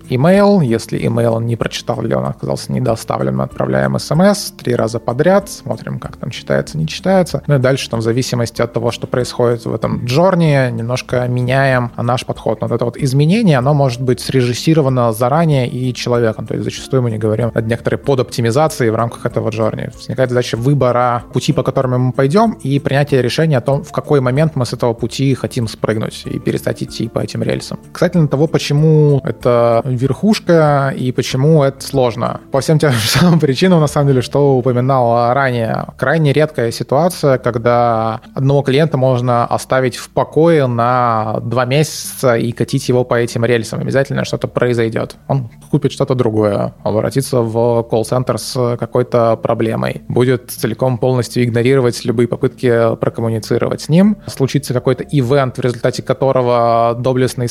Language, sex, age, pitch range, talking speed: Russian, male, 20-39, 120-140 Hz, 170 wpm